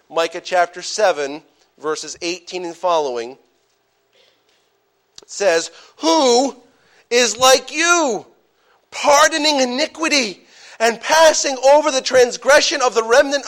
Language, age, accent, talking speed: English, 40-59, American, 100 wpm